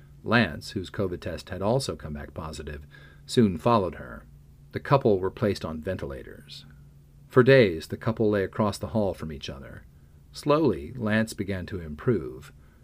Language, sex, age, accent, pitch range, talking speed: English, male, 40-59, American, 80-115 Hz, 160 wpm